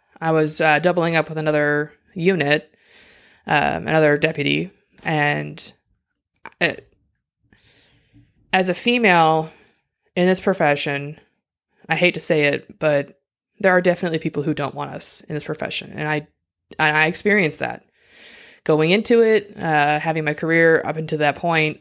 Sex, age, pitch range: female, 20-39, 145-175 Hz